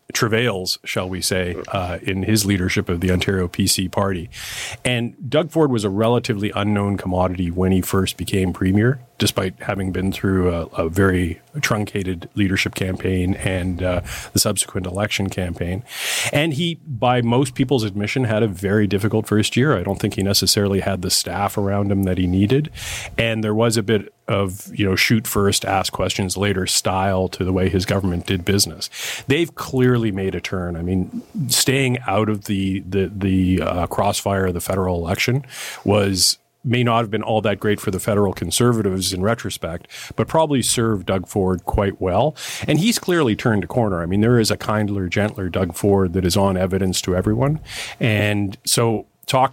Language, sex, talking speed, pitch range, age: English, male, 185 wpm, 95-115 Hz, 40-59